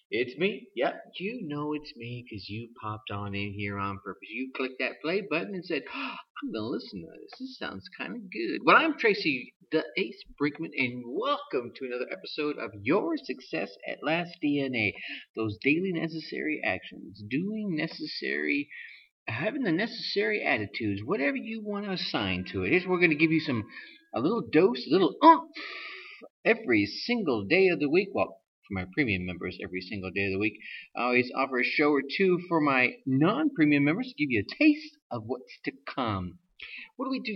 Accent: American